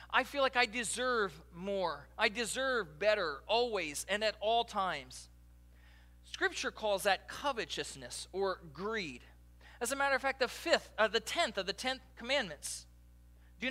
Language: English